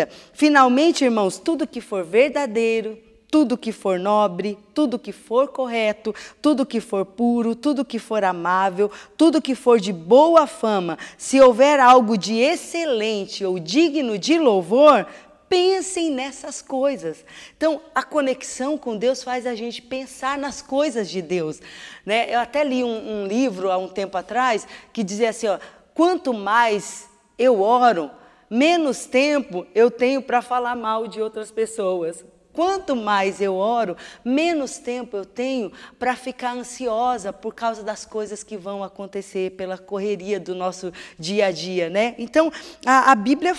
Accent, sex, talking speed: Brazilian, female, 155 wpm